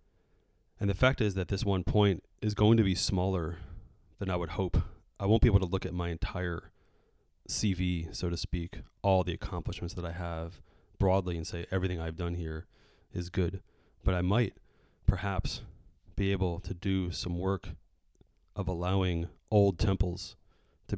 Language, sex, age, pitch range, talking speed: English, male, 30-49, 85-100 Hz, 170 wpm